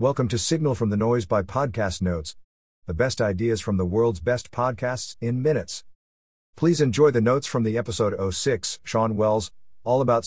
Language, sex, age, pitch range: English, male, 50-69, 90-125 Hz